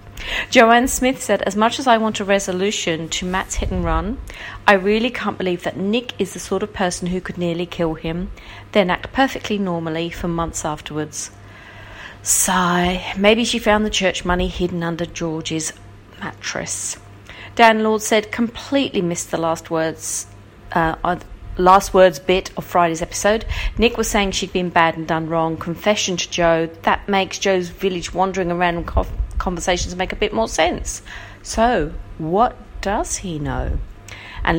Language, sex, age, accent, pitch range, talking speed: English, female, 40-59, British, 165-210 Hz, 165 wpm